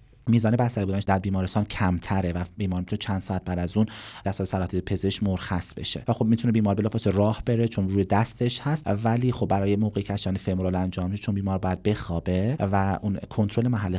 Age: 30-49